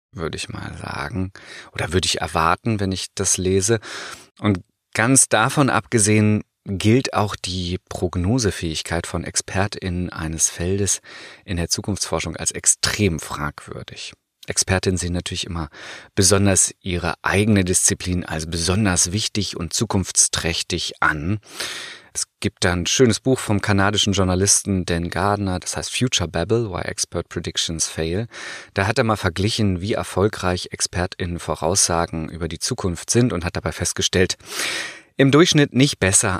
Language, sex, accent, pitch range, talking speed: German, male, German, 85-105 Hz, 135 wpm